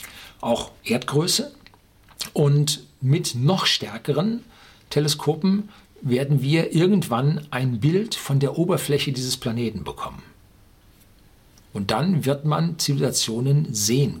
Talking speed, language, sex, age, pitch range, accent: 100 wpm, German, male, 50-69, 120-160 Hz, German